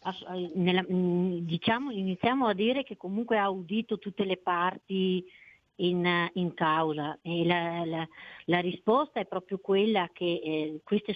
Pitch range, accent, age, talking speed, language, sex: 165-190 Hz, native, 50-69, 140 wpm, Italian, female